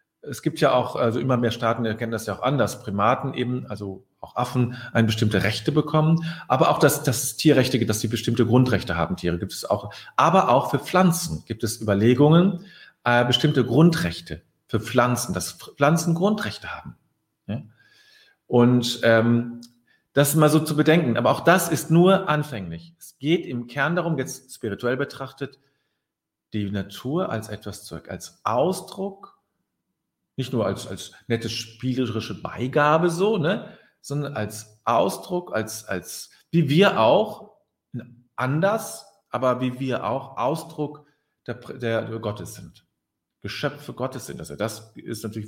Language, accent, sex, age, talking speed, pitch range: German, German, male, 40-59, 150 wpm, 110-150 Hz